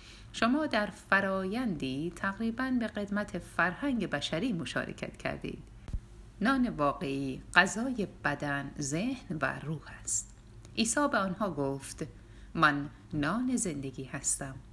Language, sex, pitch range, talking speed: Persian, female, 125-190 Hz, 105 wpm